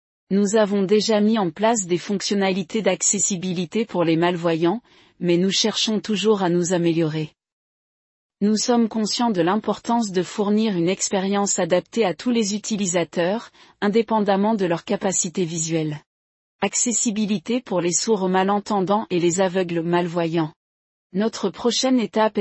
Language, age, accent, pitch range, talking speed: French, 40-59, French, 175-215 Hz, 135 wpm